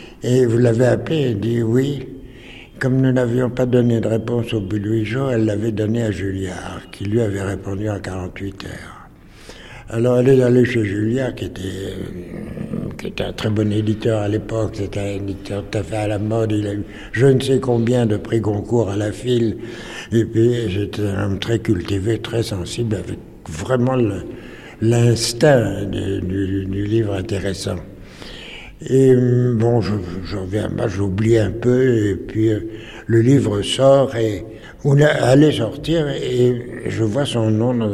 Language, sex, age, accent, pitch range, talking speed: French, male, 60-79, French, 100-125 Hz, 175 wpm